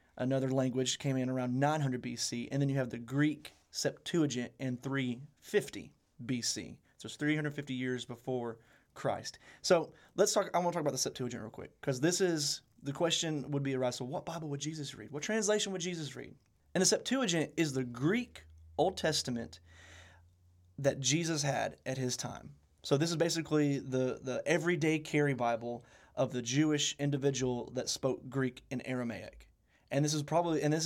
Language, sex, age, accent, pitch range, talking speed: English, male, 30-49, American, 125-150 Hz, 175 wpm